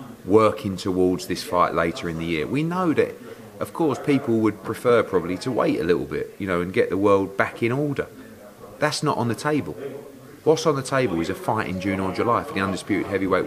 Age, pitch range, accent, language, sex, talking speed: 30-49, 100-125 Hz, British, English, male, 225 wpm